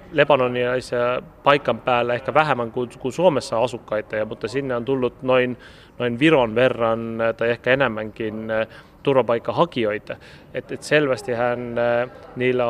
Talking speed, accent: 115 wpm, native